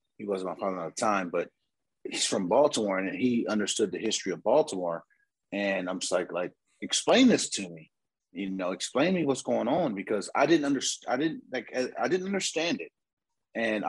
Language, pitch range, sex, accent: English, 95-110 Hz, male, American